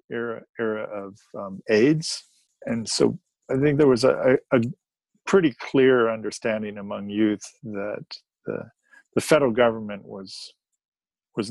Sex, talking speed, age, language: male, 130 wpm, 50-69, English